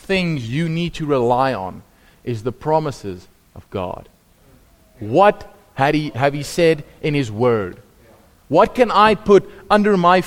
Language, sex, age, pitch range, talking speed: English, male, 30-49, 130-175 Hz, 140 wpm